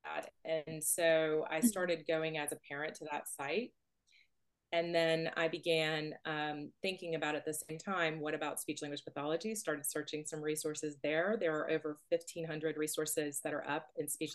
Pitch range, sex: 155-175 Hz, female